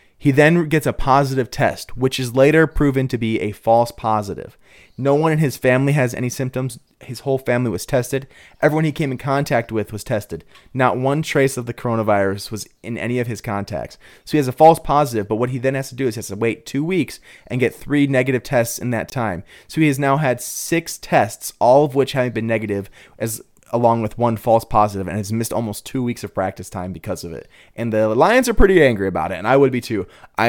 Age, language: 30-49, English